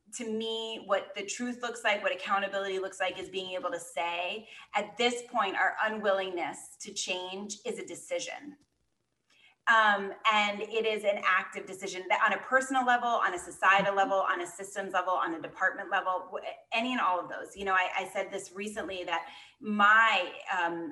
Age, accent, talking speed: 30-49, American, 185 wpm